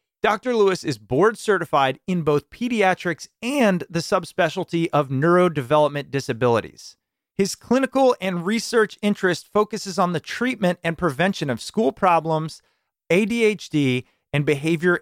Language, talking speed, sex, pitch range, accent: English, 125 wpm, male, 135-190 Hz, American